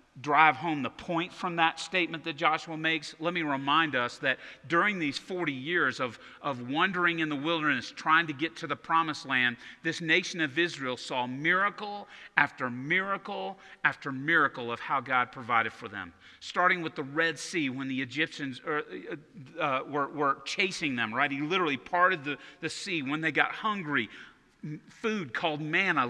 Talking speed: 175 wpm